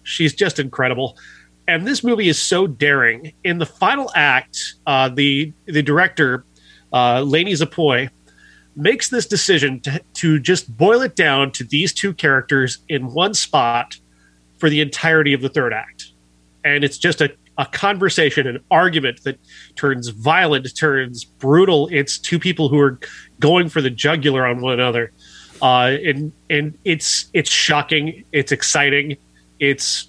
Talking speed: 150 wpm